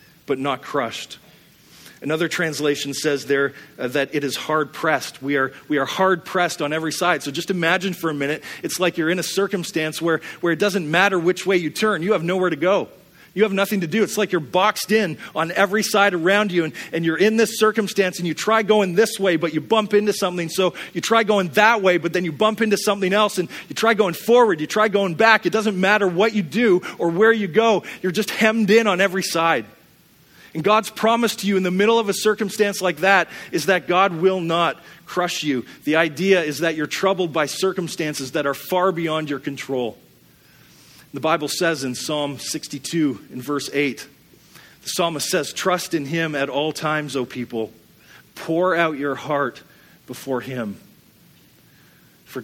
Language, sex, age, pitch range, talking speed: English, male, 40-59, 155-200 Hz, 205 wpm